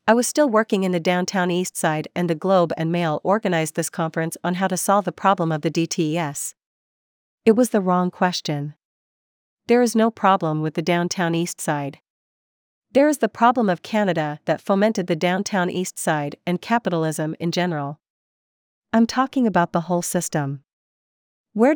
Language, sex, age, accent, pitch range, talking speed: English, female, 40-59, American, 165-215 Hz, 175 wpm